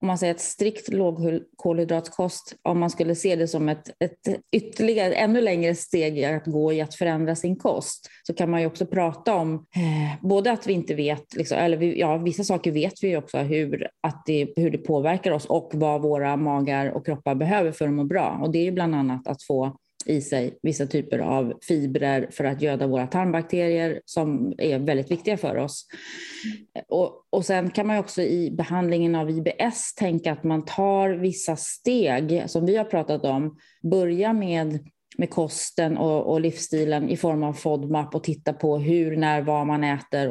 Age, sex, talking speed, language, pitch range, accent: 30-49, female, 195 wpm, Swedish, 150-180 Hz, native